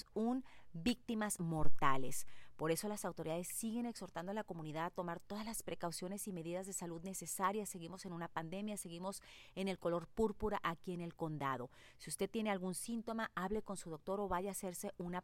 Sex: female